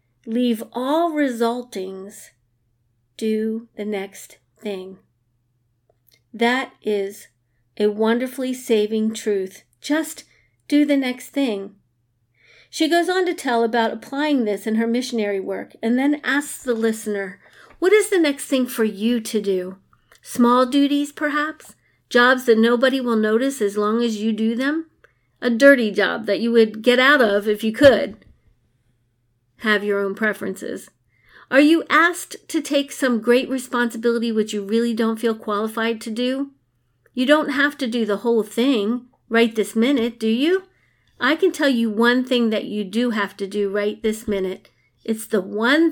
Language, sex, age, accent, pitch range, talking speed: English, female, 40-59, American, 205-260 Hz, 160 wpm